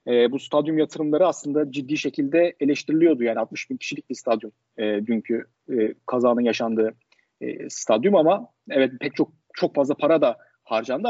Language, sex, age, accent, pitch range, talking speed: Turkish, male, 40-59, native, 125-175 Hz, 160 wpm